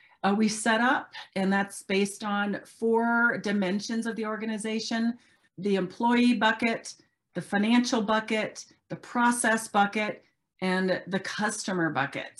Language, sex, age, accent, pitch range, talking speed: English, female, 40-59, American, 200-245 Hz, 125 wpm